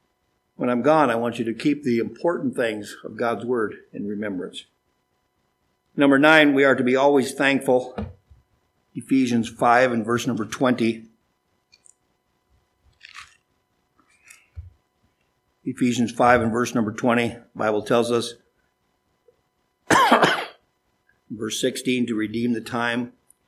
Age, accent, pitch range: 50-69, American, 110-125 Hz